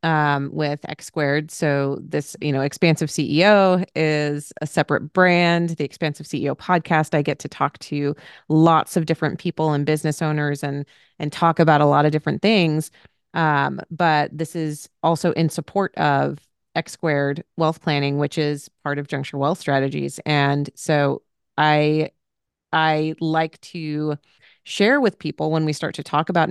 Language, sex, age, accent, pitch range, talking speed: English, female, 30-49, American, 145-165 Hz, 165 wpm